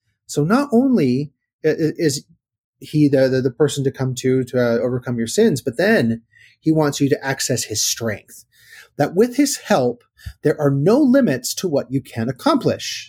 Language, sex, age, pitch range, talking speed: English, male, 30-49, 120-155 Hz, 180 wpm